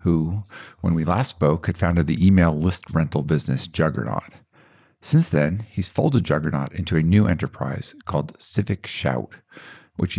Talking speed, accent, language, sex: 155 wpm, American, English, male